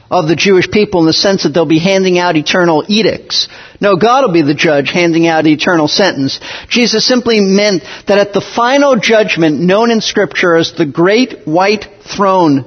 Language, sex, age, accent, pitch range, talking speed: English, male, 50-69, American, 165-230 Hz, 190 wpm